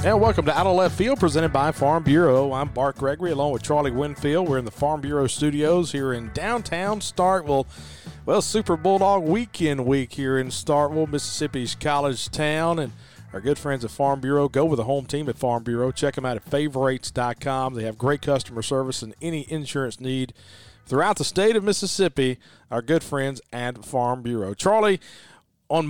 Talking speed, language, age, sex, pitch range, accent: 190 wpm, English, 40-59, male, 120-155 Hz, American